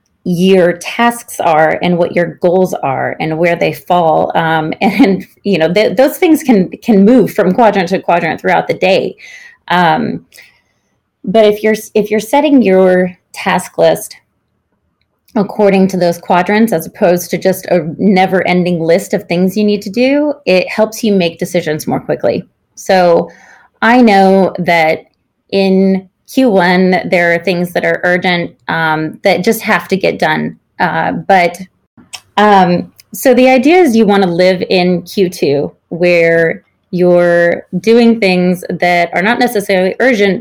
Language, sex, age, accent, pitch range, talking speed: English, female, 30-49, American, 175-210 Hz, 155 wpm